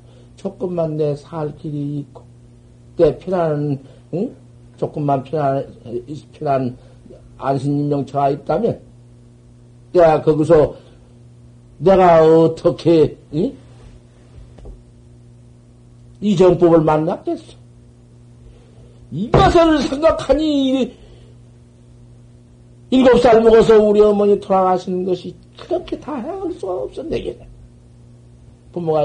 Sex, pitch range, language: male, 120-195 Hz, Korean